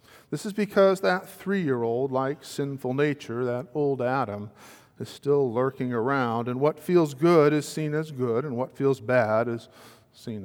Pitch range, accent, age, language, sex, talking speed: 115-145 Hz, American, 50-69, English, male, 165 wpm